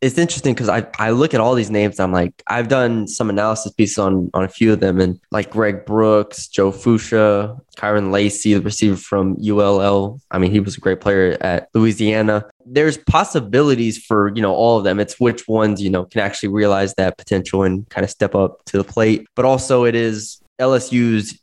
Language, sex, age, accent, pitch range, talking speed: English, male, 20-39, American, 100-115 Hz, 210 wpm